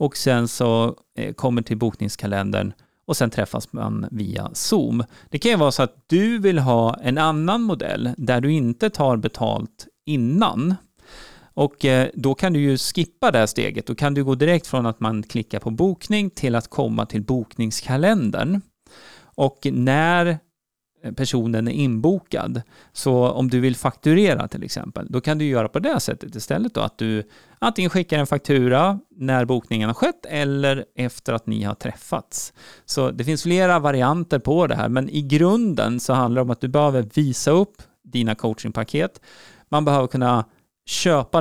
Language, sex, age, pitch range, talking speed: Swedish, male, 30-49, 120-155 Hz, 170 wpm